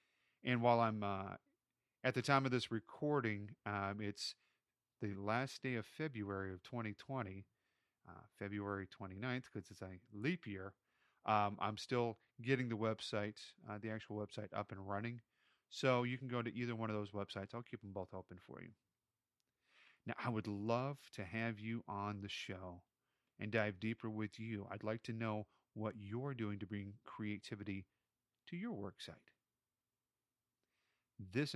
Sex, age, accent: male, 30-49, American